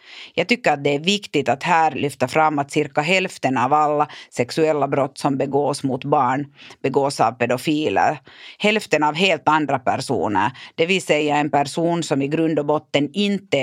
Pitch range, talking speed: 140-165 Hz, 175 wpm